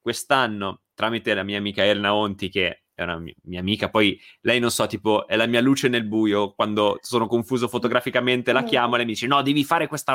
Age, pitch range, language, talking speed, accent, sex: 20-39, 100-135 Hz, Italian, 215 wpm, native, male